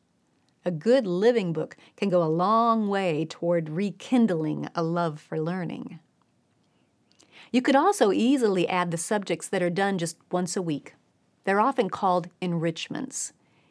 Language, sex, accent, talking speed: English, female, American, 145 wpm